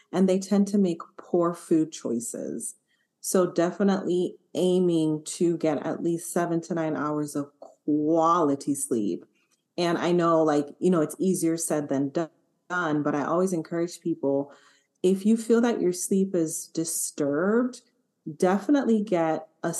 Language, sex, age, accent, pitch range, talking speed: English, female, 30-49, American, 155-200 Hz, 150 wpm